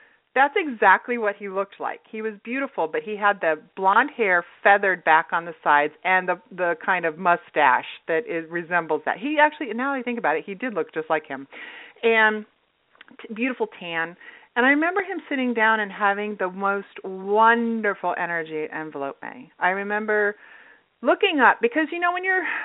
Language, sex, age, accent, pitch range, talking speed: English, female, 40-59, American, 185-255 Hz, 190 wpm